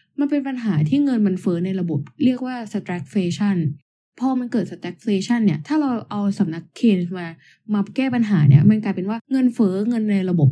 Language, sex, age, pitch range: Thai, female, 10-29, 175-230 Hz